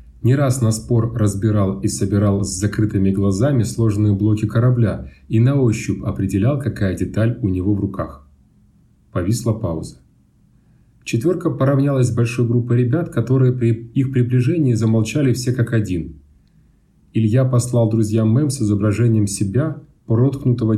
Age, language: 30-49, Russian